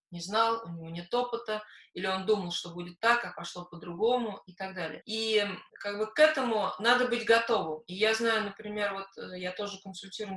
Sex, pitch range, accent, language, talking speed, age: female, 190-235 Hz, native, Russian, 195 wpm, 20-39